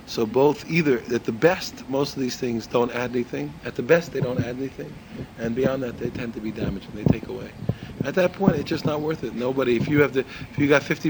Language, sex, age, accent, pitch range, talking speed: English, male, 40-59, American, 130-160 Hz, 265 wpm